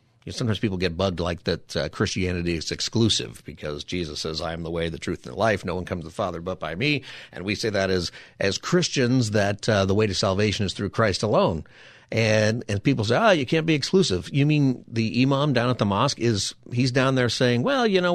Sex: male